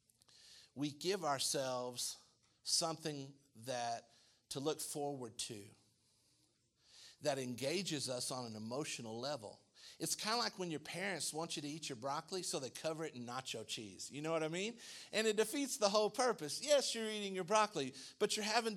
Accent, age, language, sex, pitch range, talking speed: American, 50-69, English, male, 140-215 Hz, 175 wpm